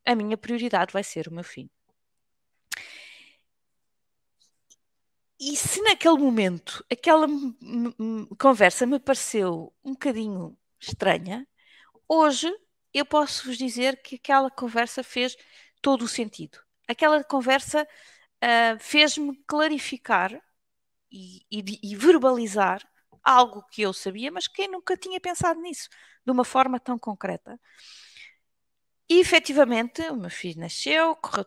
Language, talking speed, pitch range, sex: Portuguese, 120 wpm, 205-280 Hz, female